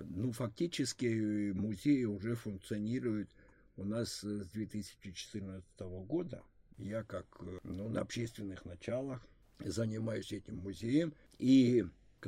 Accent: native